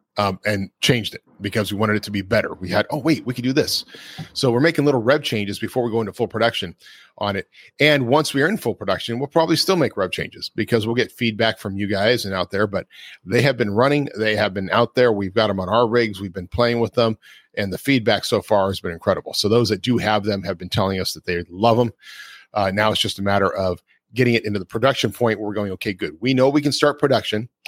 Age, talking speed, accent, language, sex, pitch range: 40-59, 265 wpm, American, English, male, 100-125 Hz